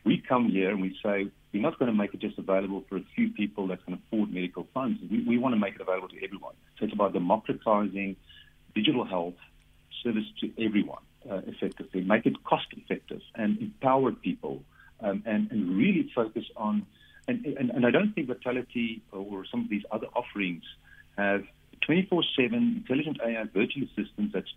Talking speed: 185 wpm